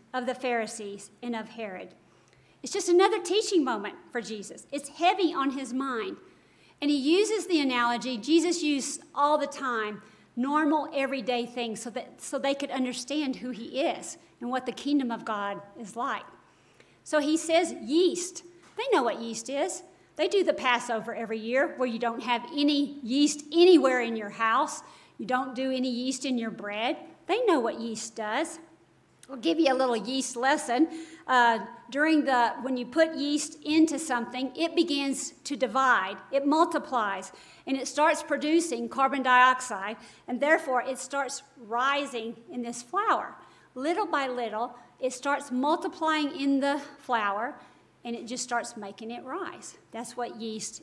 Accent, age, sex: American, 50-69, female